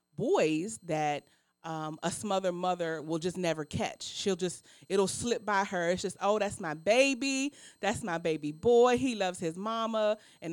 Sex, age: female, 30-49